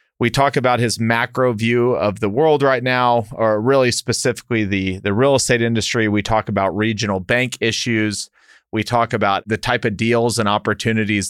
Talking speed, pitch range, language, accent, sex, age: 180 wpm, 100-120 Hz, English, American, male, 40-59